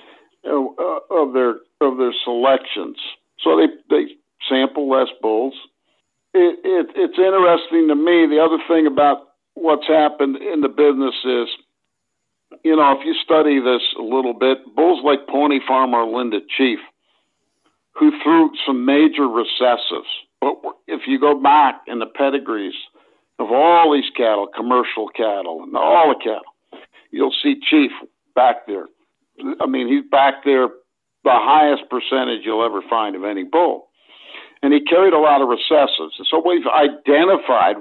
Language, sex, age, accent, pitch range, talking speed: English, male, 60-79, American, 125-210 Hz, 150 wpm